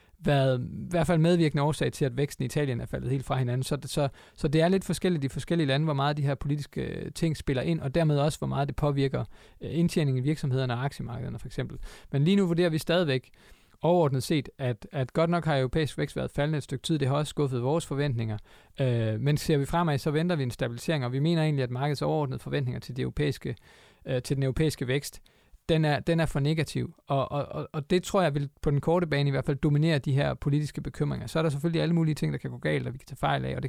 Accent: native